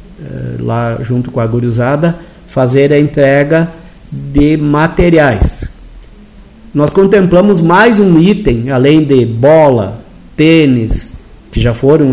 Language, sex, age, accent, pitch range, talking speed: Portuguese, male, 50-69, Brazilian, 115-155 Hz, 110 wpm